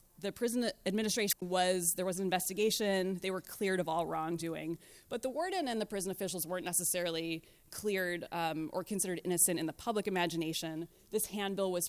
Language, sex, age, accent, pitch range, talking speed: English, female, 20-39, American, 170-215 Hz, 175 wpm